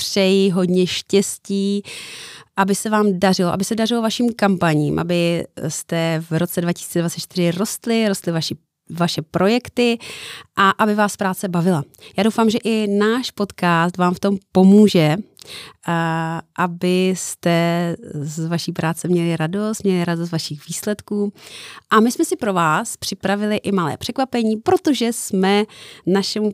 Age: 30-49